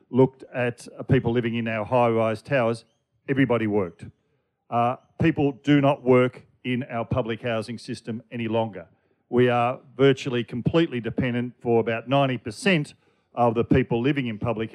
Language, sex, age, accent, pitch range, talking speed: English, male, 50-69, Australian, 115-135 Hz, 145 wpm